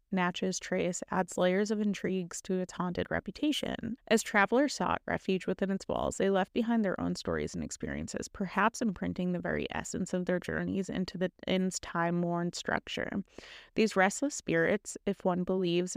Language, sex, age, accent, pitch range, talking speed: English, female, 30-49, American, 180-210 Hz, 165 wpm